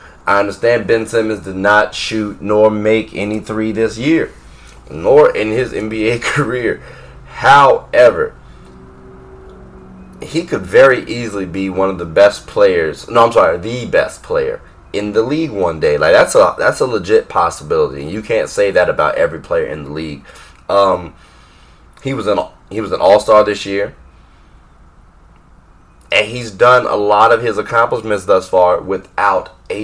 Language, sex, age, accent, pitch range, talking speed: English, male, 20-39, American, 85-140 Hz, 160 wpm